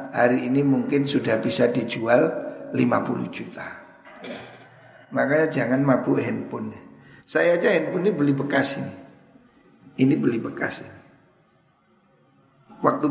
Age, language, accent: 50-69, Indonesian, native